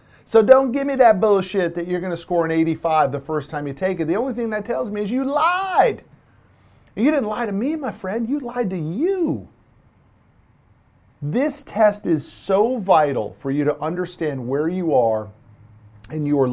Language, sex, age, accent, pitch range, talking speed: English, male, 50-69, American, 130-200 Hz, 190 wpm